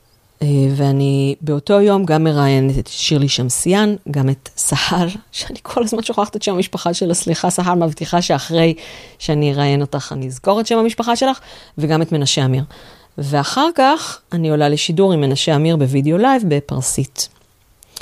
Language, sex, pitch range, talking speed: Hebrew, female, 140-175 Hz, 155 wpm